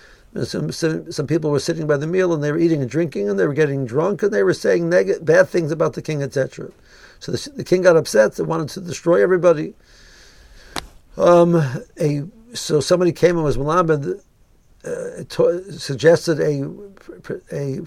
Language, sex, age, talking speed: English, male, 60-79, 180 wpm